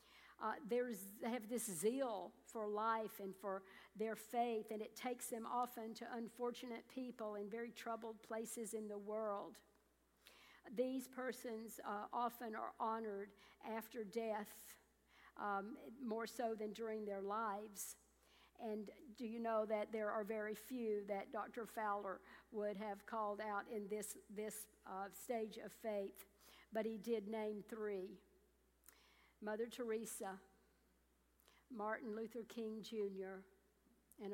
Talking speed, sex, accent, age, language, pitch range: 135 wpm, female, American, 50-69, English, 200-230 Hz